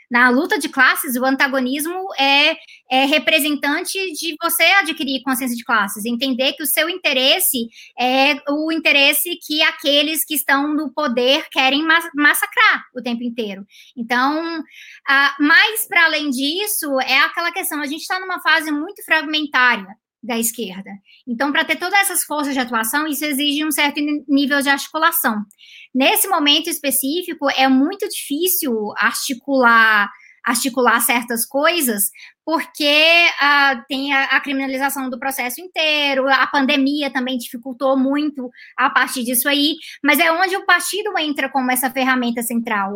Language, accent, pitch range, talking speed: Portuguese, Brazilian, 255-320 Hz, 145 wpm